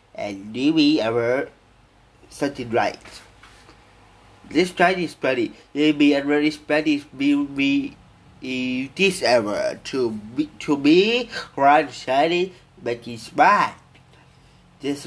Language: Thai